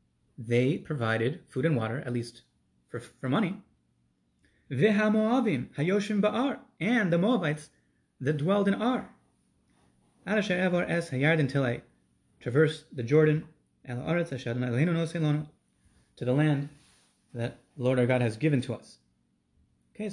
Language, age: English, 30-49